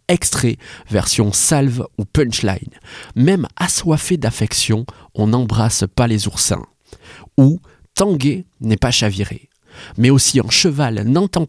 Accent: French